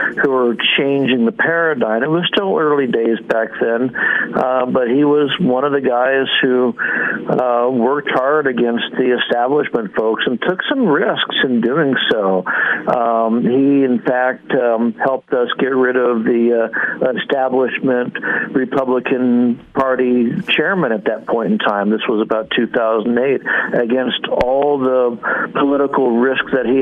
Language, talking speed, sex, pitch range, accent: English, 150 wpm, male, 120-135 Hz, American